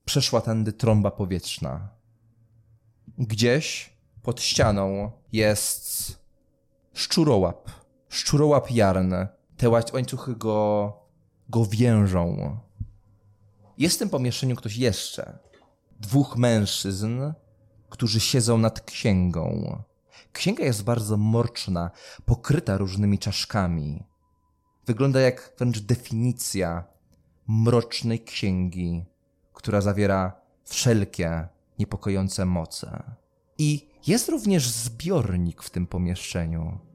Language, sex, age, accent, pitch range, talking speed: English, male, 20-39, Polish, 95-120 Hz, 85 wpm